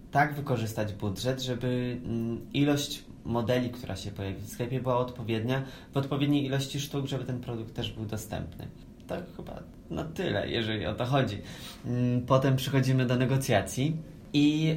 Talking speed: 145 wpm